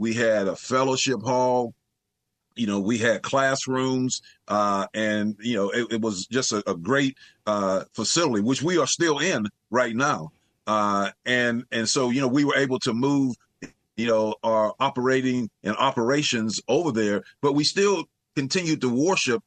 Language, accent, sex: English, American, male